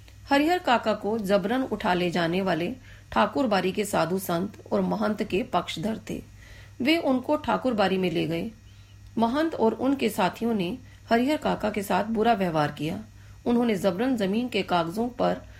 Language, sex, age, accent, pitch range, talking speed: Hindi, female, 40-59, native, 170-235 Hz, 160 wpm